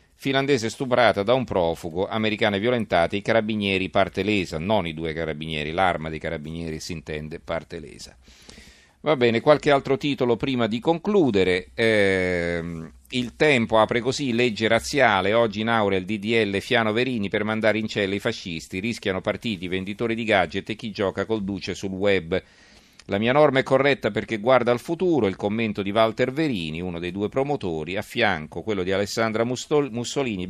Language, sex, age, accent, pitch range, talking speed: Italian, male, 40-59, native, 95-125 Hz, 170 wpm